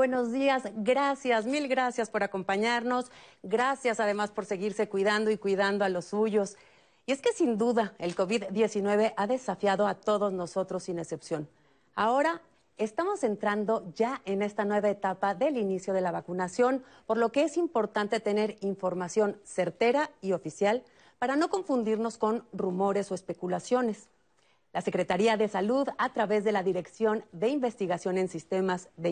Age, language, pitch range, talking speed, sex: 40-59, Spanish, 195-235 Hz, 155 wpm, female